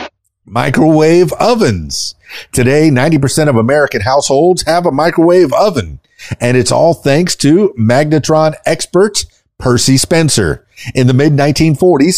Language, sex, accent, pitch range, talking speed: English, male, American, 115-155 Hz, 120 wpm